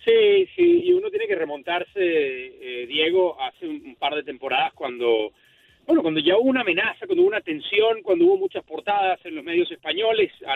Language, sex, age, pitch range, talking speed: Spanish, male, 40-59, 240-390 Hz, 195 wpm